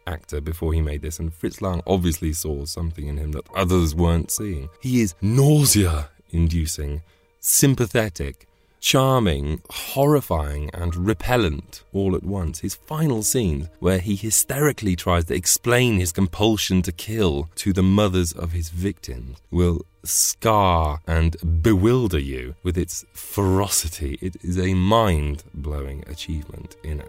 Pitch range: 80-105 Hz